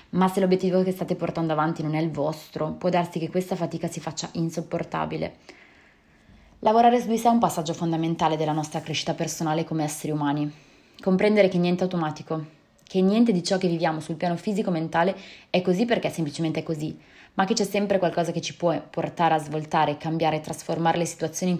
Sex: female